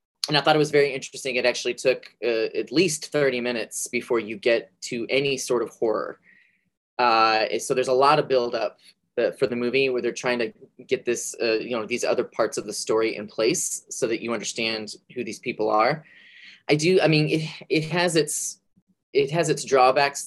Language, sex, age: English, male, 20-39